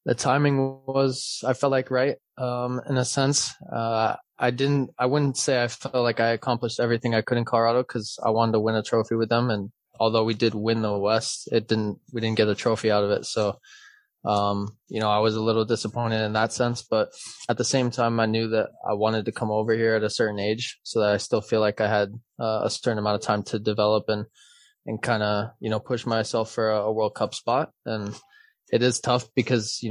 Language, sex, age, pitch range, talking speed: English, male, 20-39, 105-115 Hz, 240 wpm